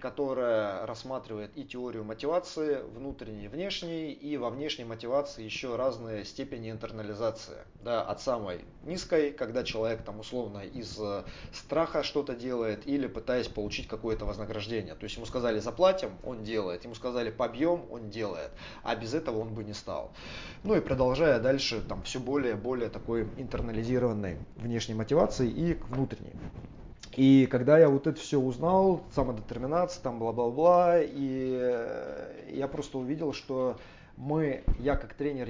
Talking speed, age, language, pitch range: 145 wpm, 20-39, Russian, 110-140 Hz